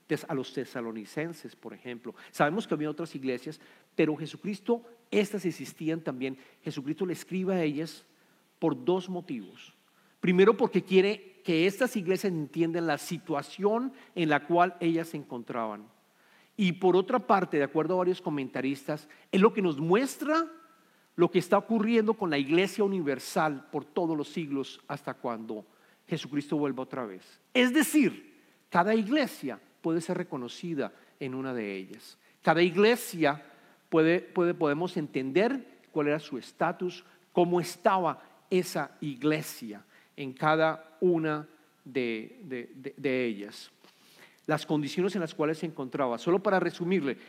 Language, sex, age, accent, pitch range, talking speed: English, male, 50-69, Mexican, 140-190 Hz, 145 wpm